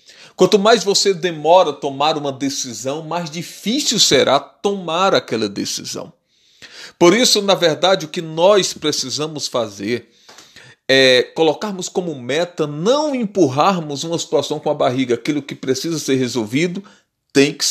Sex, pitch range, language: male, 140-185 Hz, Portuguese